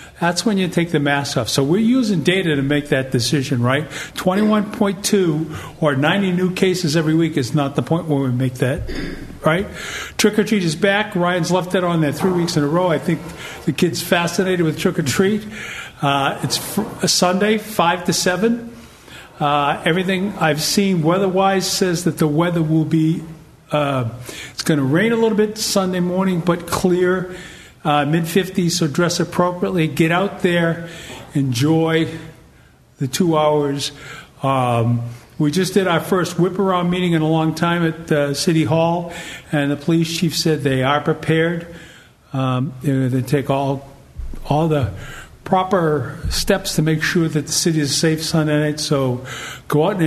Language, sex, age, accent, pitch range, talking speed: English, male, 50-69, American, 145-180 Hz, 175 wpm